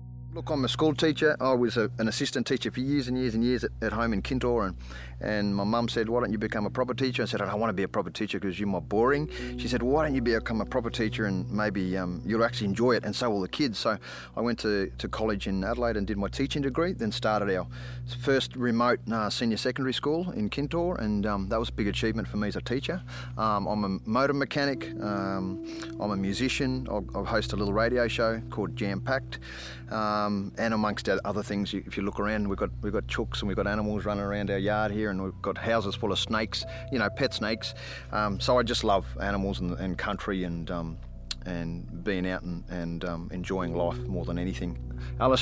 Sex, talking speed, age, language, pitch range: male, 240 wpm, 30-49, English, 95-115 Hz